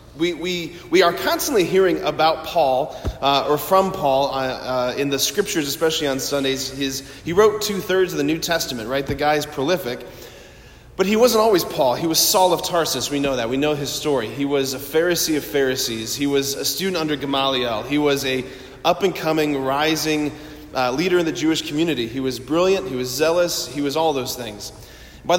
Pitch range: 135-170 Hz